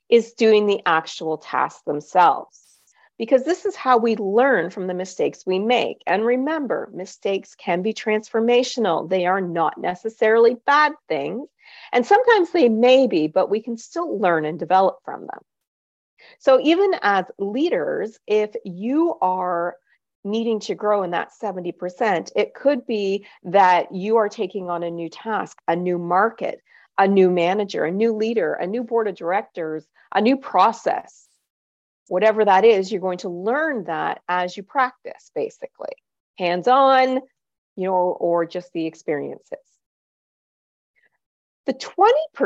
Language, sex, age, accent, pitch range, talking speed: English, female, 40-59, American, 185-265 Hz, 150 wpm